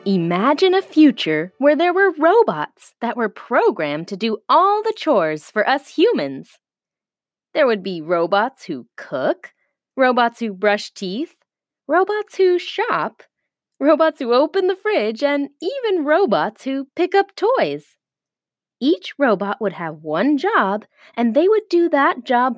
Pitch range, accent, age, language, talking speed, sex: 200-325 Hz, American, 20-39, English, 145 wpm, female